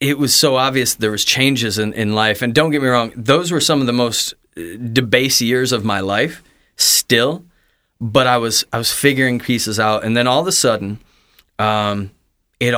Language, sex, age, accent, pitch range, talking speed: English, male, 30-49, American, 110-135 Hz, 200 wpm